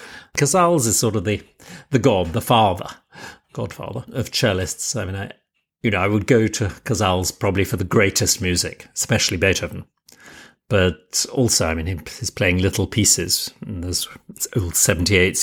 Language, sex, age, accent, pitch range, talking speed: English, male, 40-59, British, 90-115 Hz, 150 wpm